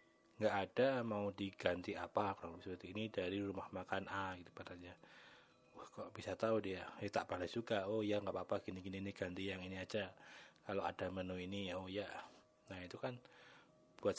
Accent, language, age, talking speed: native, Indonesian, 20-39, 185 wpm